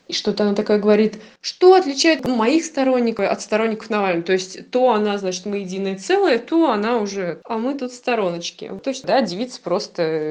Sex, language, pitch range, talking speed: female, Russian, 175-250 Hz, 180 wpm